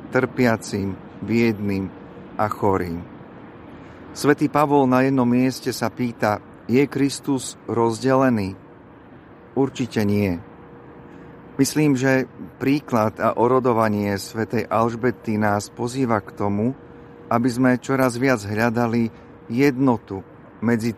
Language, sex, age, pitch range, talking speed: Slovak, male, 40-59, 105-125 Hz, 95 wpm